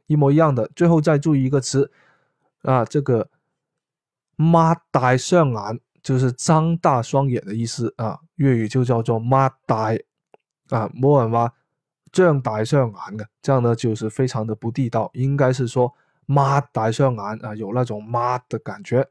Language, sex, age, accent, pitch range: Chinese, male, 20-39, native, 120-155 Hz